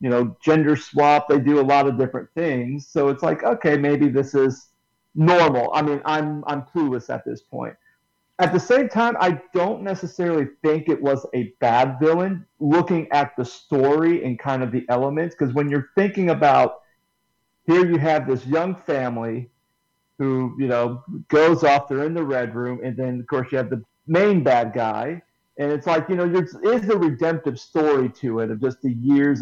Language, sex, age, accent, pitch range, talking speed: English, male, 40-59, American, 130-170 Hz, 195 wpm